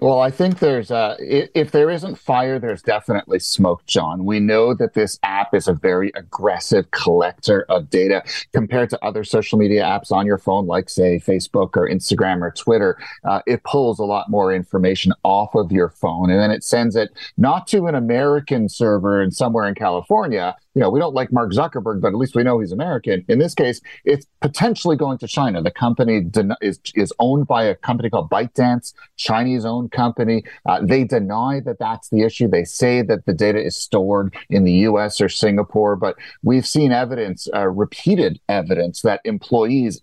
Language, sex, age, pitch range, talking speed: English, male, 40-59, 100-130 Hz, 195 wpm